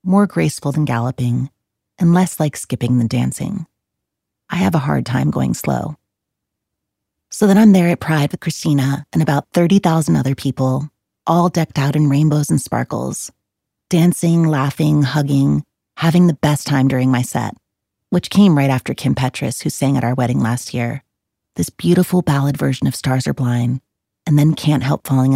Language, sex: English, female